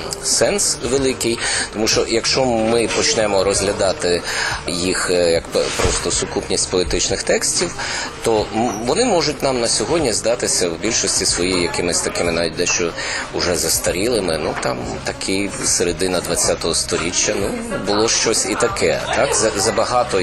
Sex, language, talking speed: male, Ukrainian, 130 wpm